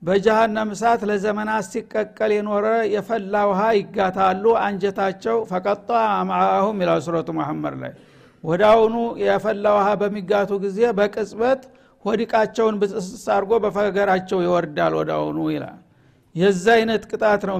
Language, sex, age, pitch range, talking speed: Amharic, male, 60-79, 190-225 Hz, 90 wpm